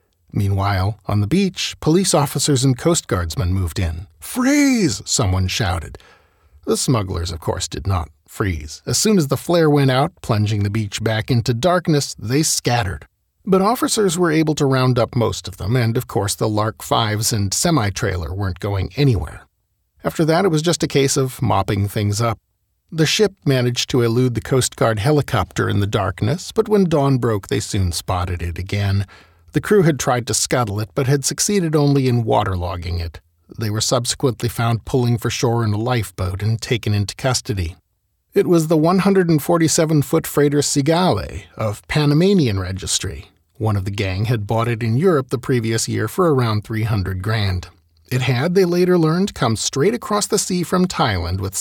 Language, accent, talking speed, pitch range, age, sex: English, American, 180 wpm, 100-145 Hz, 50-69, male